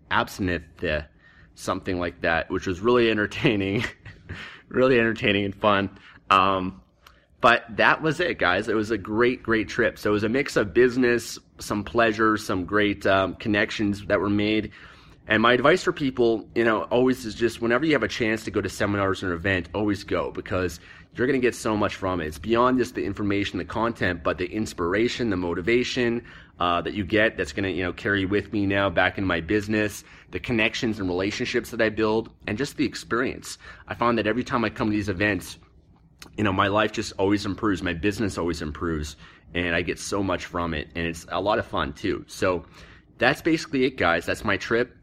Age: 30-49